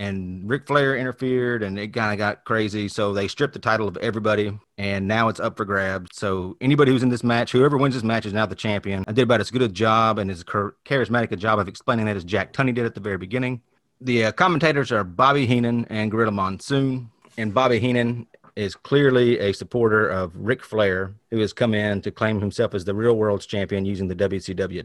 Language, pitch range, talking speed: English, 100-120 Hz, 225 wpm